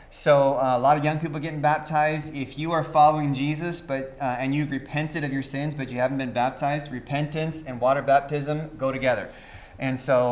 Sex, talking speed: male, 205 wpm